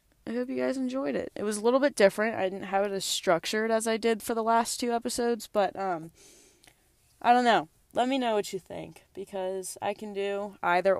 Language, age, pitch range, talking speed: English, 20-39, 180-225 Hz, 230 wpm